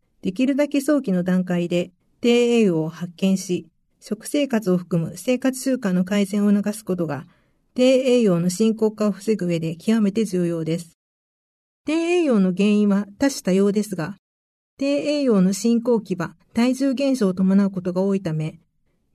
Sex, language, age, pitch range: female, Japanese, 50-69, 185-250 Hz